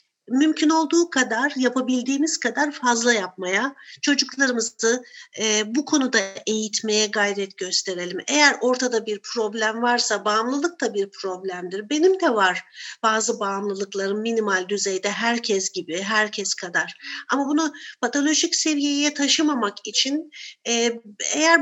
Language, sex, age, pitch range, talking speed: Turkish, female, 50-69, 210-280 Hz, 115 wpm